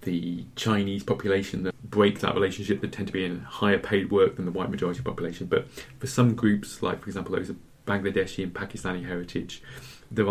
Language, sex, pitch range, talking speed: English, male, 90-105 Hz, 200 wpm